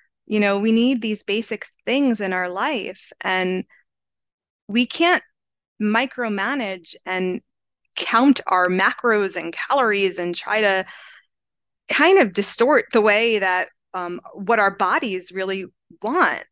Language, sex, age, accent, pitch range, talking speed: English, female, 20-39, American, 190-255 Hz, 125 wpm